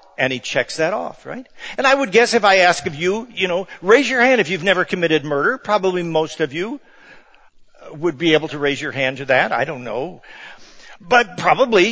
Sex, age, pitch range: male, 50-69, 150-215 Hz